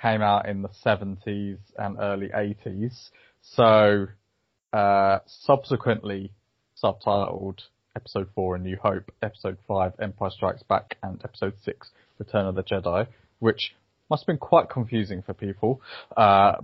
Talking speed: 135 wpm